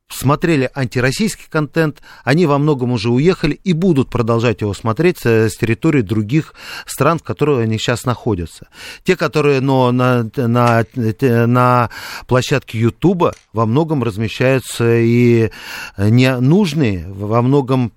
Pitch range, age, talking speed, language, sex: 115-145 Hz, 40-59, 115 wpm, Russian, male